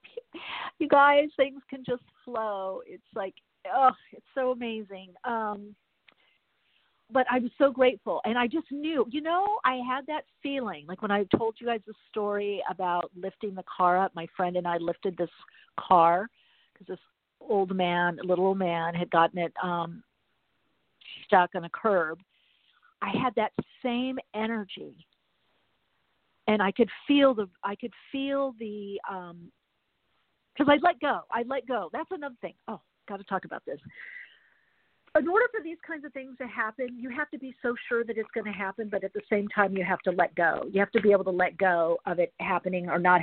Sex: female